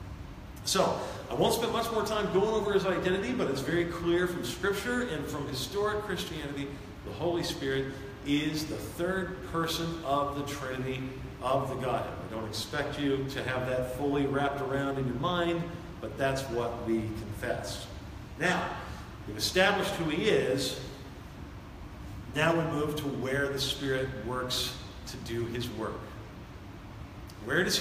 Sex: male